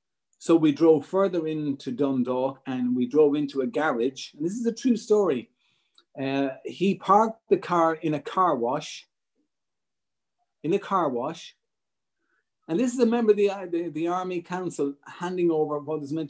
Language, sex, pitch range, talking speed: English, male, 135-170 Hz, 175 wpm